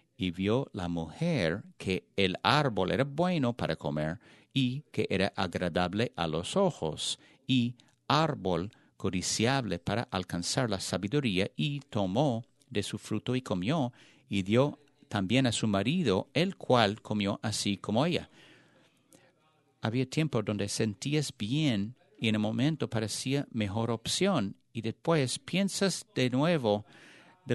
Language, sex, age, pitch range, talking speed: English, male, 50-69, 100-135 Hz, 135 wpm